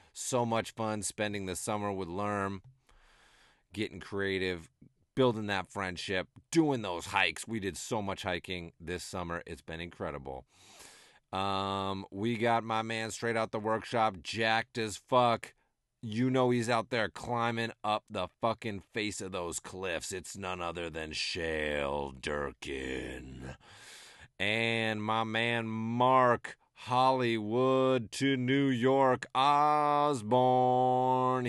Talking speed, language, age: 125 wpm, English, 40-59